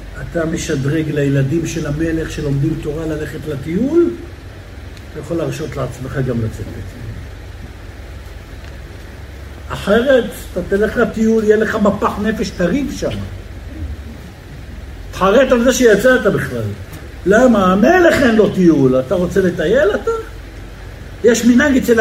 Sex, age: male, 60-79